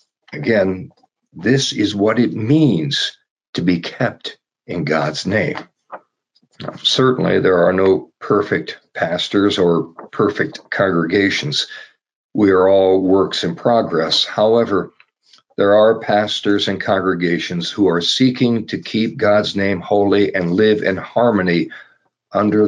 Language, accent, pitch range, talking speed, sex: English, American, 90-110 Hz, 120 wpm, male